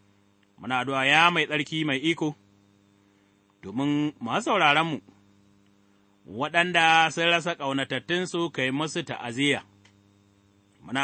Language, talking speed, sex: English, 105 wpm, male